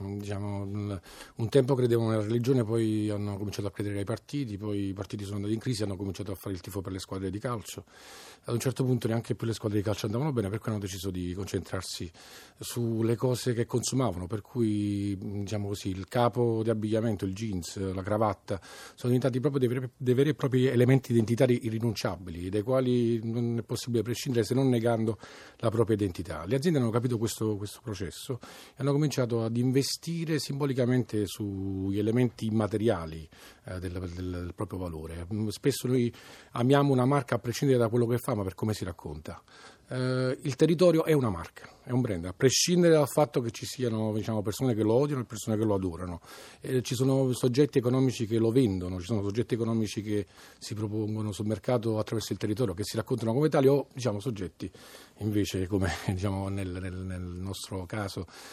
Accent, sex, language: native, male, Italian